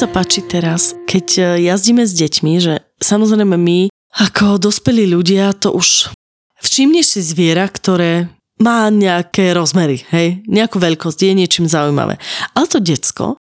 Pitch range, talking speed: 165-195 Hz, 135 wpm